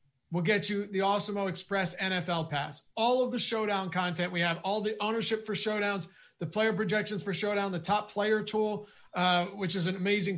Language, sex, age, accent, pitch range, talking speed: English, male, 30-49, American, 175-215 Hz, 195 wpm